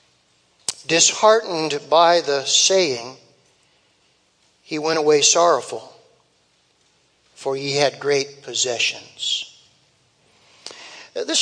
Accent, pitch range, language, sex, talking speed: American, 160-220 Hz, English, male, 75 wpm